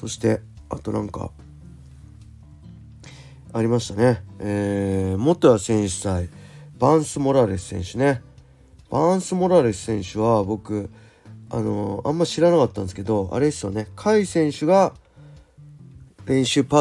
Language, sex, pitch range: Japanese, male, 100-130 Hz